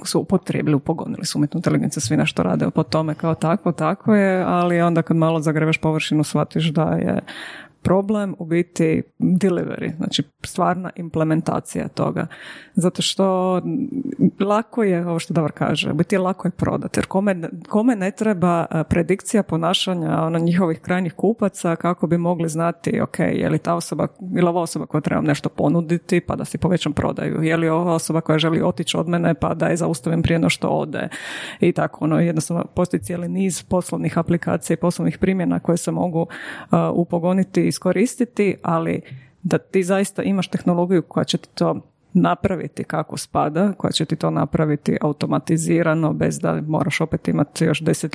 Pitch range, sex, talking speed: 160-185 Hz, female, 170 wpm